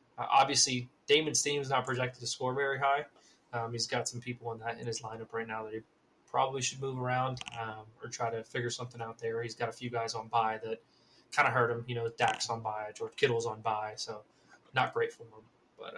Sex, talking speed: male, 235 wpm